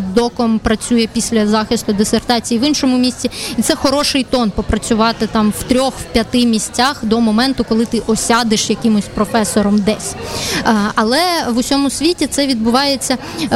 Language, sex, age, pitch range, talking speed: Ukrainian, female, 20-39, 230-270 Hz, 150 wpm